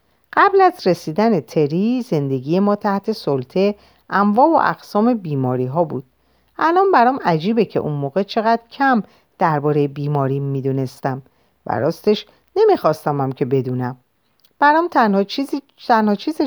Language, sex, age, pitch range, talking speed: Persian, female, 50-69, 145-235 Hz, 125 wpm